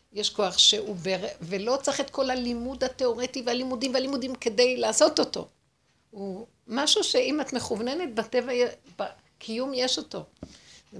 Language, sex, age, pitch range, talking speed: Hebrew, female, 60-79, 175-225 Hz, 135 wpm